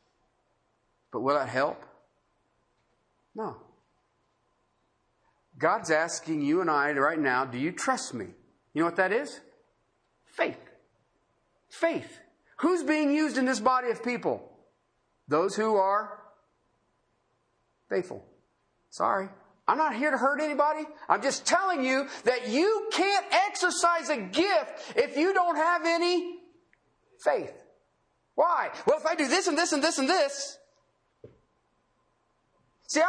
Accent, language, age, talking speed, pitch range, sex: American, English, 50-69, 130 wpm, 215-360 Hz, male